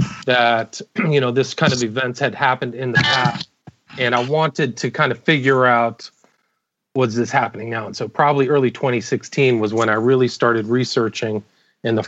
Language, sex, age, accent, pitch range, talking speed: English, male, 40-59, American, 110-130 Hz, 185 wpm